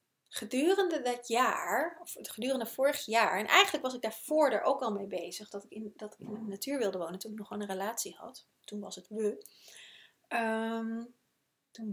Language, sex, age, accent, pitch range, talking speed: Dutch, female, 30-49, Dutch, 210-265 Hz, 200 wpm